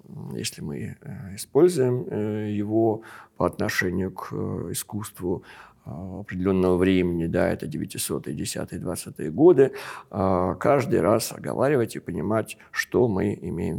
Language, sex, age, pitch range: Russian, male, 50-69, 90-115 Hz